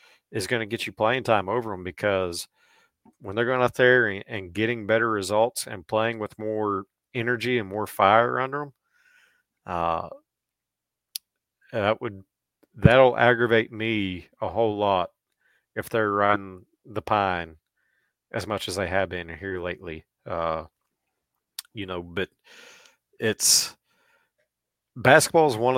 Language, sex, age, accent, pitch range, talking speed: English, male, 40-59, American, 95-120 Hz, 145 wpm